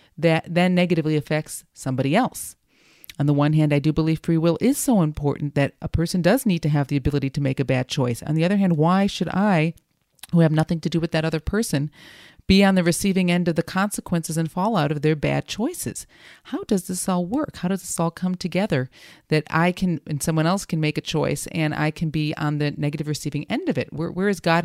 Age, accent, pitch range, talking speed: 40-59, American, 150-185 Hz, 240 wpm